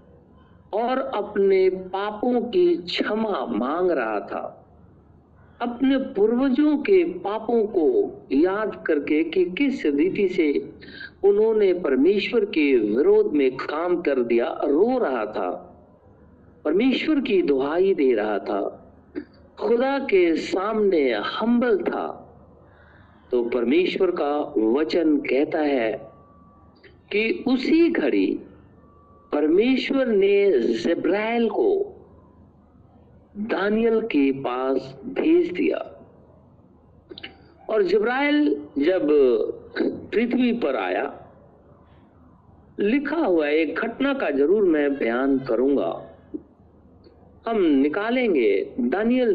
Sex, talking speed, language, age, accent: male, 95 wpm, Hindi, 50-69, native